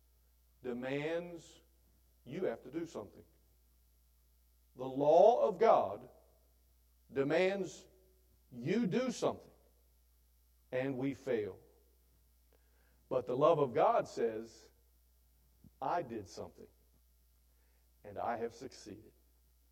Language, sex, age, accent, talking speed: English, male, 50-69, American, 90 wpm